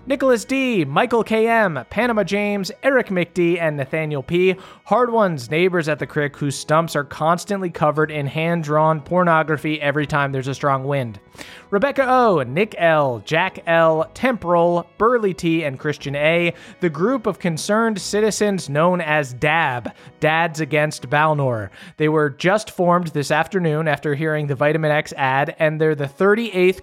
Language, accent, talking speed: English, American, 155 wpm